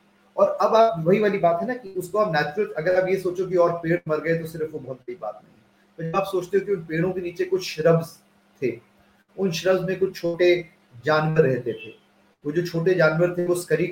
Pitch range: 160-195 Hz